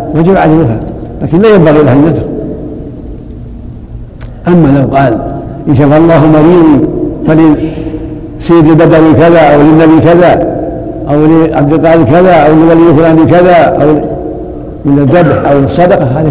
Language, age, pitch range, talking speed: Arabic, 60-79, 130-165 Hz, 125 wpm